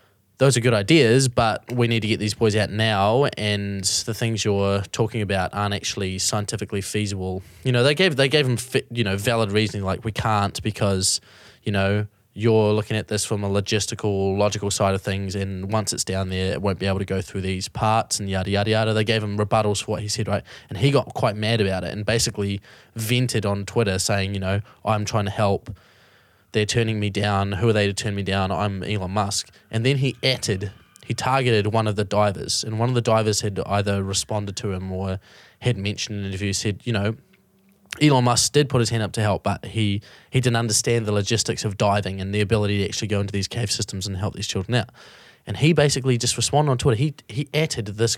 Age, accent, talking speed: 20-39, Australian, 230 wpm